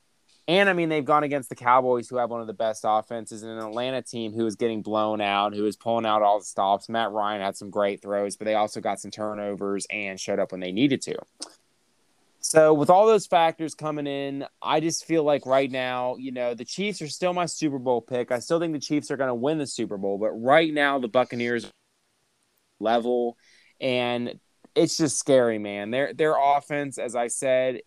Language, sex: English, male